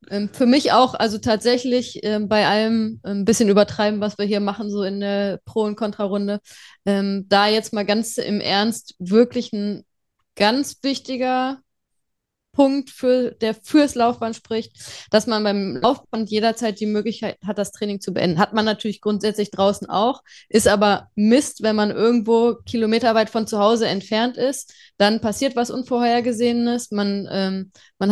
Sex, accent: female, German